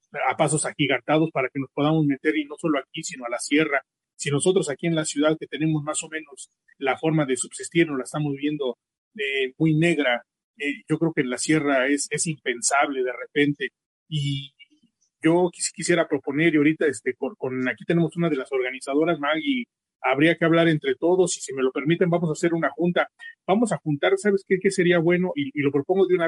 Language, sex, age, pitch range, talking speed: English, male, 30-49, 150-185 Hz, 220 wpm